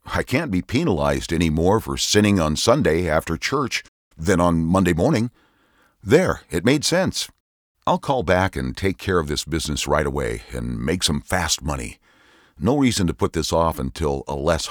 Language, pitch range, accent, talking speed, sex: English, 75-105 Hz, American, 185 wpm, male